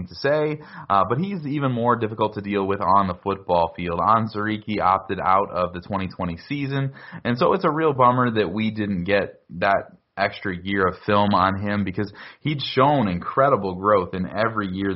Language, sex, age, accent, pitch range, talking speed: English, male, 20-39, American, 90-115 Hz, 190 wpm